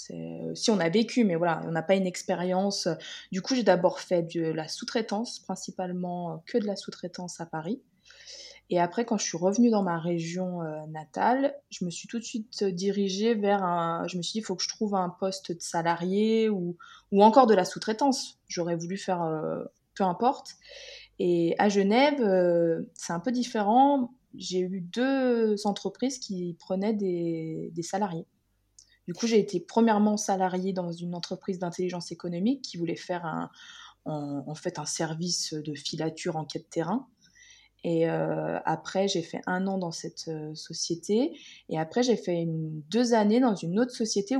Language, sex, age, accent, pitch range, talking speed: French, female, 20-39, French, 170-220 Hz, 180 wpm